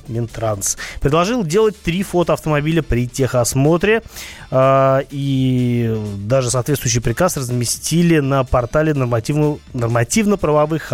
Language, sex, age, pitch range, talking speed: Russian, male, 30-49, 125-165 Hz, 100 wpm